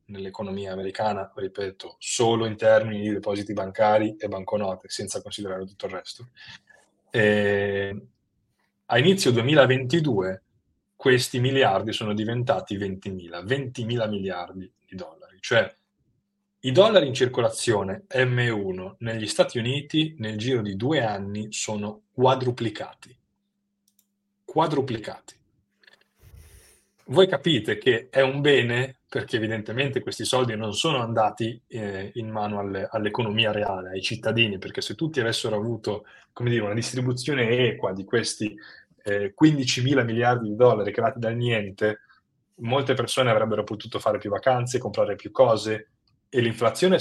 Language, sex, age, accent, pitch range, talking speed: Italian, male, 30-49, native, 105-130 Hz, 125 wpm